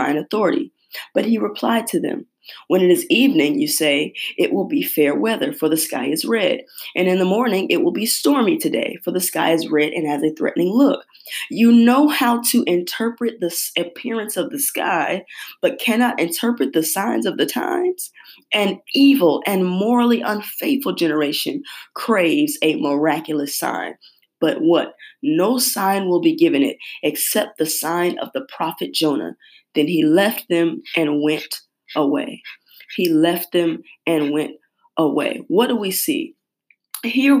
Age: 20-39